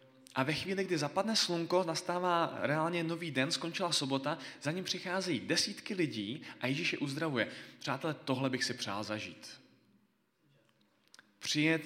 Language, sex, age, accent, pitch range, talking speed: Czech, male, 20-39, native, 130-170 Hz, 140 wpm